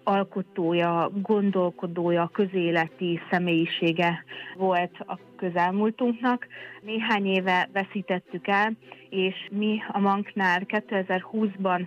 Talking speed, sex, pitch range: 80 wpm, female, 180-200 Hz